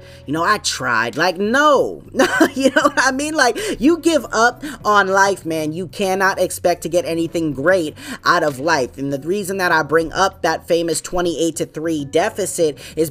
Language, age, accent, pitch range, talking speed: English, 20-39, American, 160-220 Hz, 190 wpm